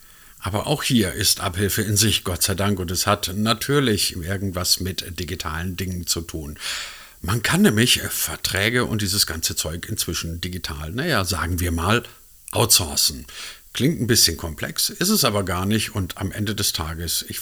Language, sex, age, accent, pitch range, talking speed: German, male, 50-69, German, 85-110 Hz, 170 wpm